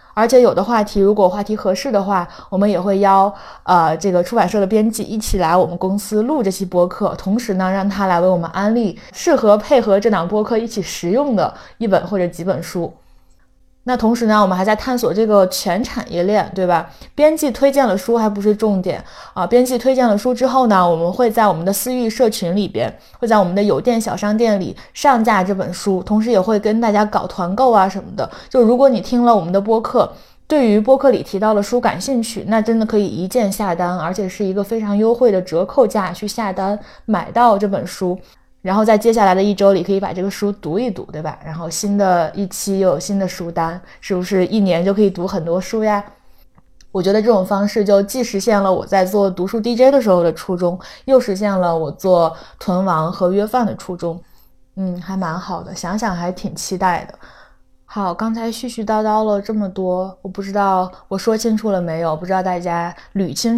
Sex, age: female, 20-39